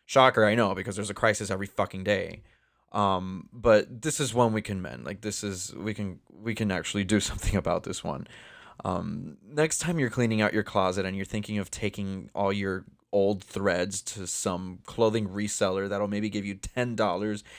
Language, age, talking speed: English, 20-39, 200 wpm